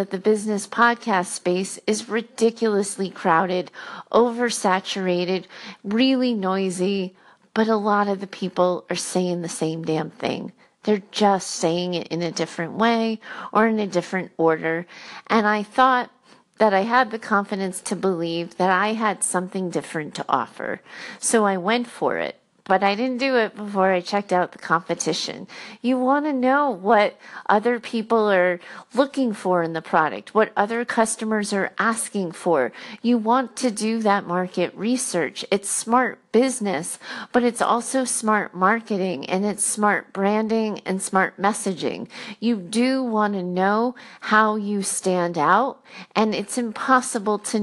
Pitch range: 185-230 Hz